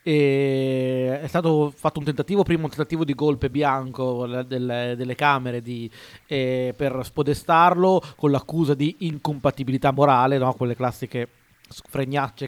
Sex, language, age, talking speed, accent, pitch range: male, Italian, 30-49, 135 wpm, native, 130-150 Hz